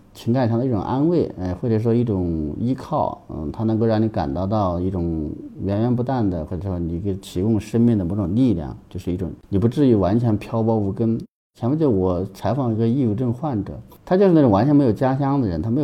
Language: Chinese